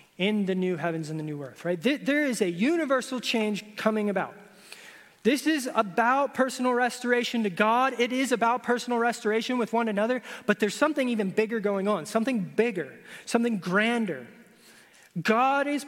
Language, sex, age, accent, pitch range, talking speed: English, male, 20-39, American, 190-250 Hz, 165 wpm